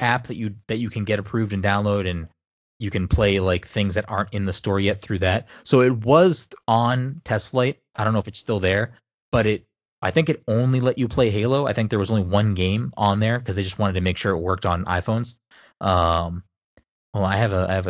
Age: 20-39